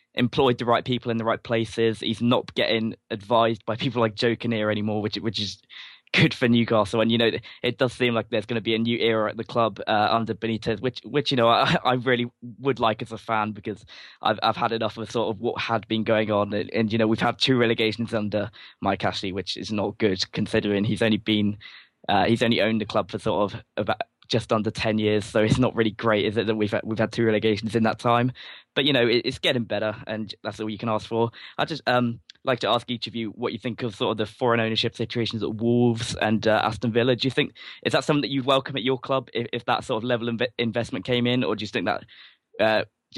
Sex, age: male, 10-29